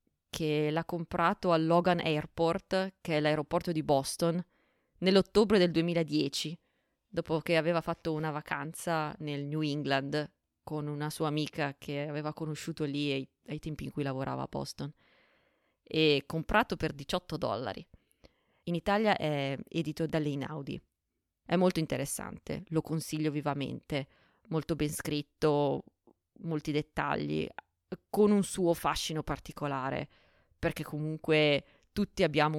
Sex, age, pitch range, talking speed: female, 20-39, 150-180 Hz, 125 wpm